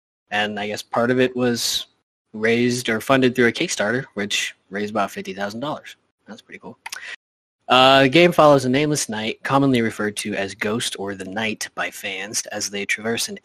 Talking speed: 185 wpm